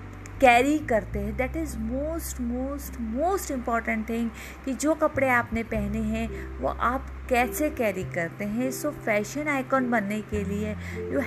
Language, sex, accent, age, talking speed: Hindi, female, native, 50-69, 155 wpm